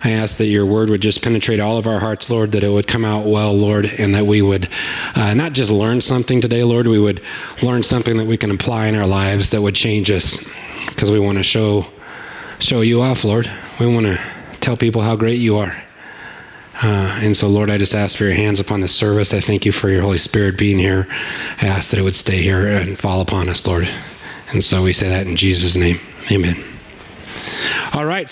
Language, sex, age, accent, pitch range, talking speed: English, male, 30-49, American, 105-155 Hz, 230 wpm